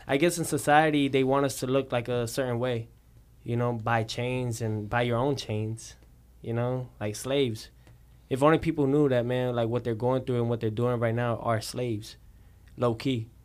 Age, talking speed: 10-29, 205 wpm